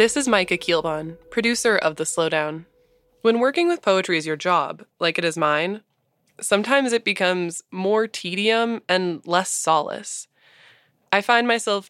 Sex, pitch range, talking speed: female, 165-215 Hz, 150 wpm